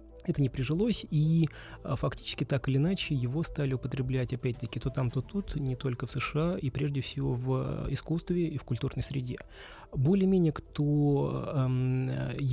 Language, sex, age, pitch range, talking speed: Russian, male, 30-49, 120-150 Hz, 155 wpm